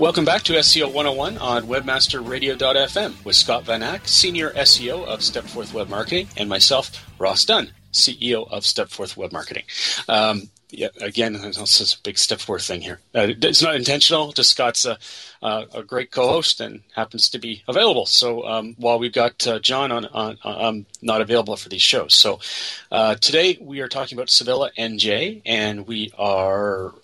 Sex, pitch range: male, 105-130 Hz